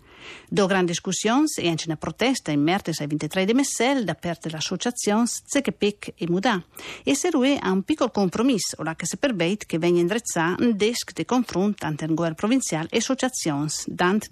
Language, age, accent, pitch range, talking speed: Italian, 50-69, native, 170-230 Hz, 190 wpm